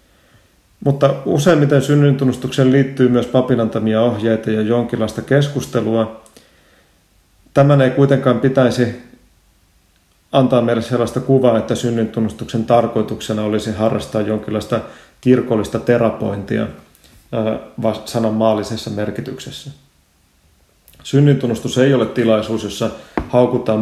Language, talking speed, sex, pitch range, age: Finnish, 85 wpm, male, 110-125 Hz, 30-49